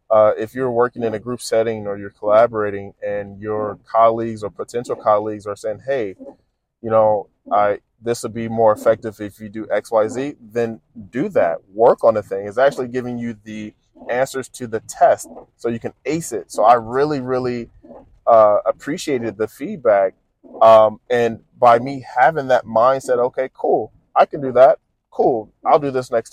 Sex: male